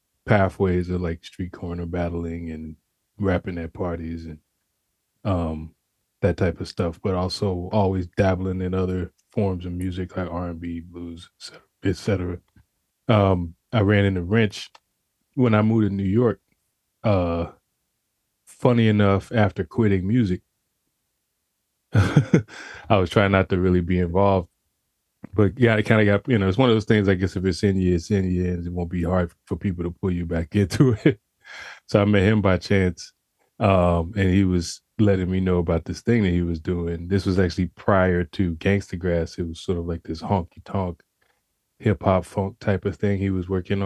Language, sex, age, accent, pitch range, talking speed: English, male, 20-39, American, 90-100 Hz, 185 wpm